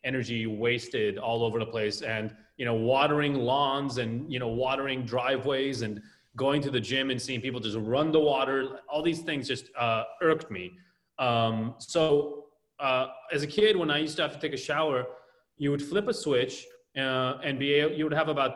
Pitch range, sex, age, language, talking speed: 120-150 Hz, male, 30-49, English, 205 wpm